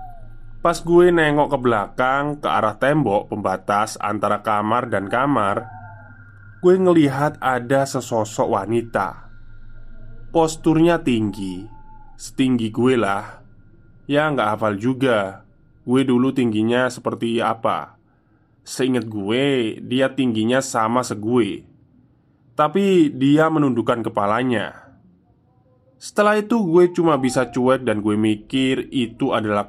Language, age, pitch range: Indonesian, 20-39, 110-140 Hz